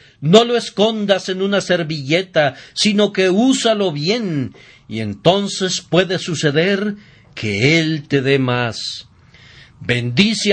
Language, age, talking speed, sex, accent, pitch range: Spanish, 50-69, 115 wpm, male, Mexican, 135-180 Hz